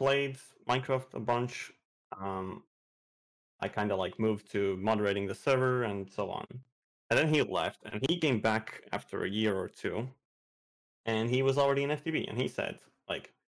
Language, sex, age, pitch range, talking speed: English, male, 30-49, 95-120 Hz, 175 wpm